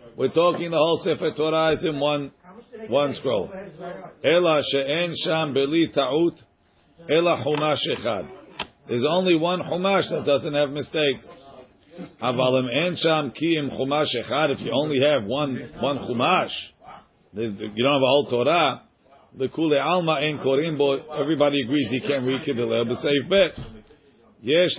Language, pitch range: English, 140-165 Hz